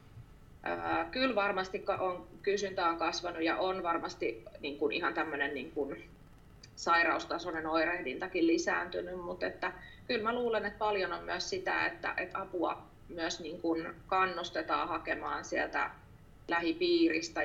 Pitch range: 165-205 Hz